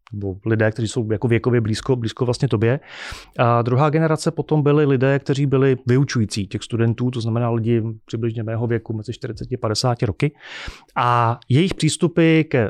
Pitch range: 115-135 Hz